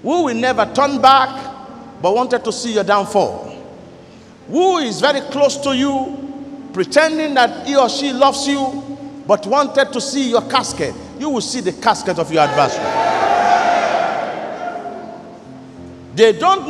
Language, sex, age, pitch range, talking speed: English, male, 50-69, 250-310 Hz, 145 wpm